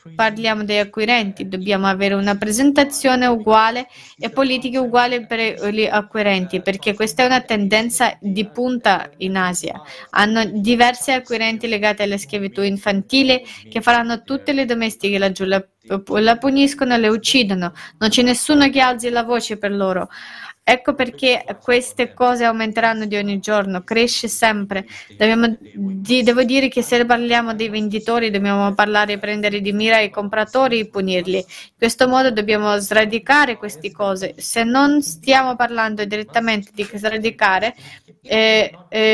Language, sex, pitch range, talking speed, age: Italian, female, 205-245 Hz, 145 wpm, 20-39